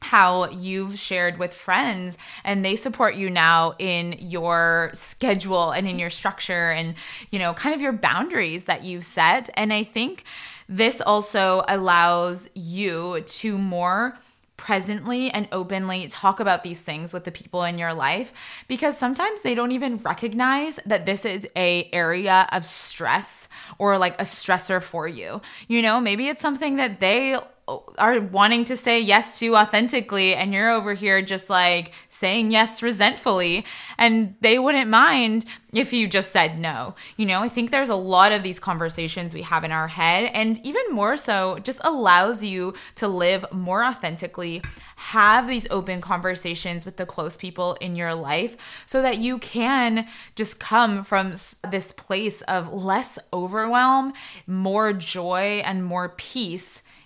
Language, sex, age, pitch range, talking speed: English, female, 20-39, 180-230 Hz, 160 wpm